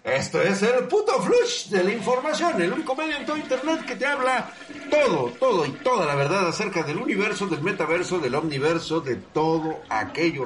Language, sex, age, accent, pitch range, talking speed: Spanish, male, 50-69, Mexican, 130-190 Hz, 190 wpm